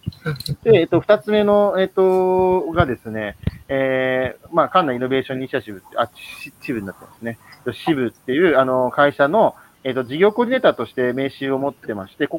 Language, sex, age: Japanese, male, 40-59